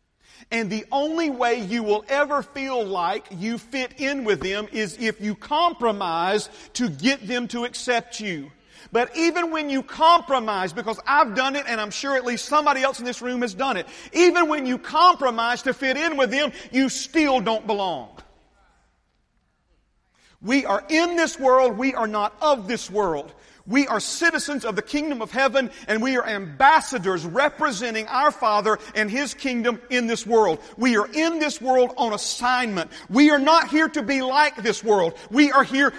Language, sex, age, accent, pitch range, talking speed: English, male, 40-59, American, 230-310 Hz, 185 wpm